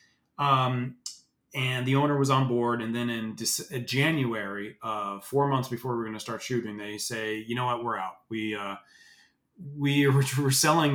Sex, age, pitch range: male, 30-49, 110-135 Hz